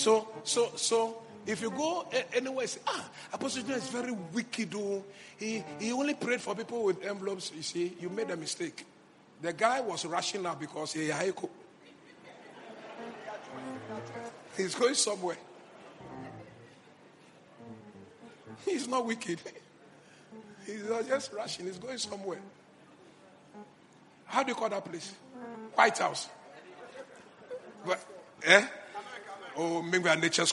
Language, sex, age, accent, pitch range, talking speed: English, male, 50-69, Nigerian, 180-245 Hz, 130 wpm